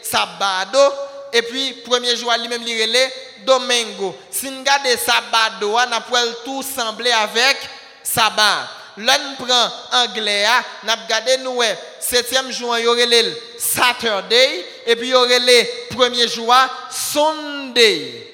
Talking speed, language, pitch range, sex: 135 wpm, French, 220-260 Hz, male